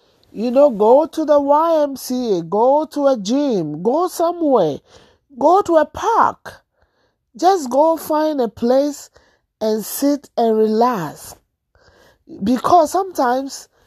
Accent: Nigerian